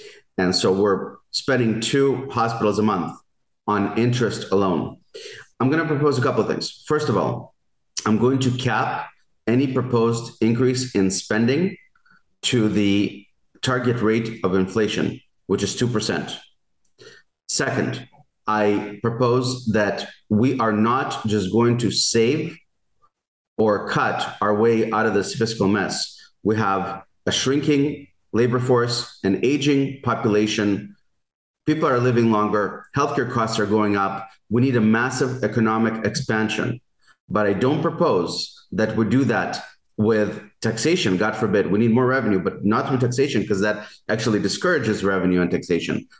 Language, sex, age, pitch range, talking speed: English, male, 40-59, 105-125 Hz, 145 wpm